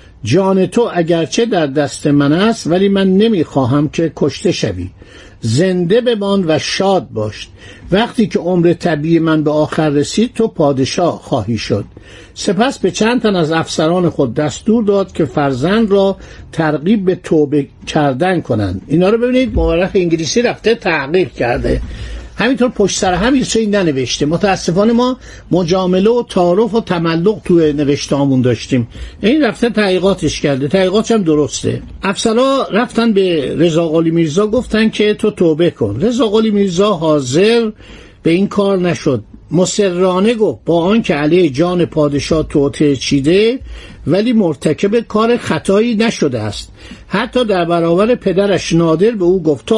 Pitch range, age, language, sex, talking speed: 150-210 Hz, 60-79, Persian, male, 145 wpm